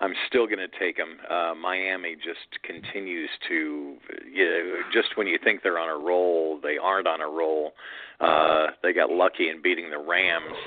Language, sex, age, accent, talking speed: English, male, 50-69, American, 190 wpm